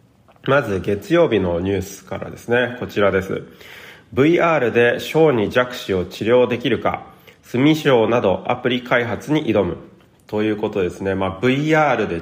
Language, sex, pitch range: Japanese, male, 95-130 Hz